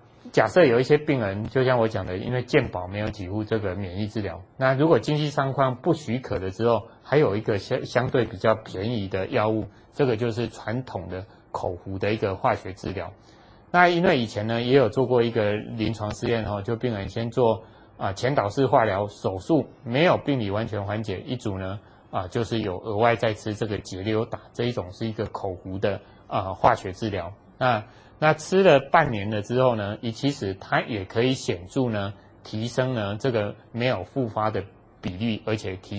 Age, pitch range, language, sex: 20-39, 100-125 Hz, Chinese, male